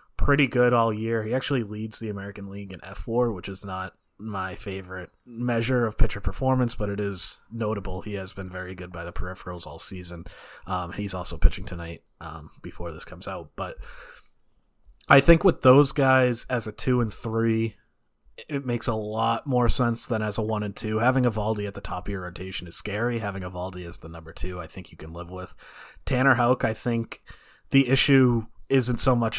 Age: 30-49